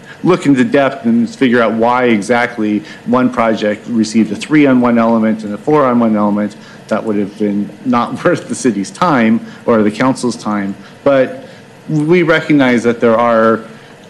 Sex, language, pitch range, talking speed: male, English, 110-130 Hz, 160 wpm